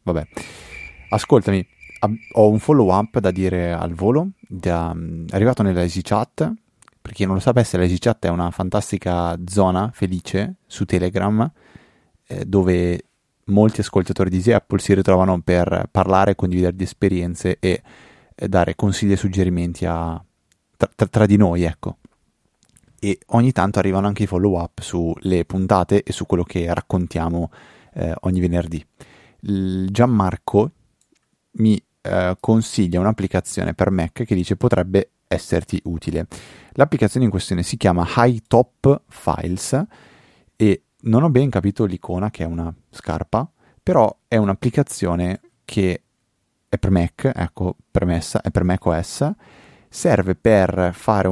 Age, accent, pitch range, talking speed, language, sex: 20-39, native, 90-105 Hz, 135 wpm, Italian, male